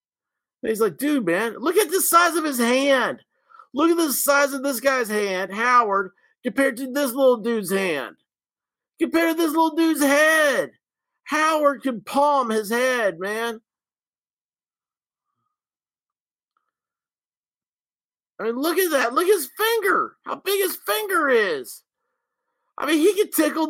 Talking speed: 145 wpm